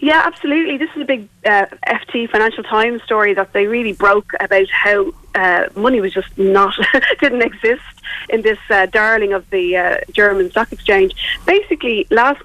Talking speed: 175 wpm